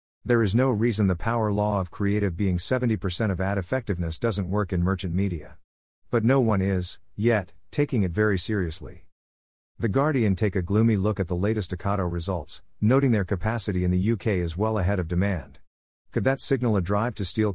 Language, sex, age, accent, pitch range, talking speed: English, male, 50-69, American, 90-110 Hz, 195 wpm